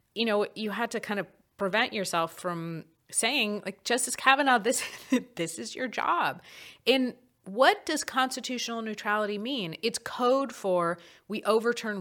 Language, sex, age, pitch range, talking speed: English, female, 30-49, 170-240 Hz, 150 wpm